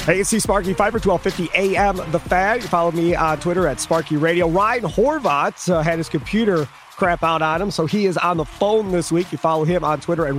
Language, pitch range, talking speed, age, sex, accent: English, 145-180 Hz, 230 wpm, 30-49, male, American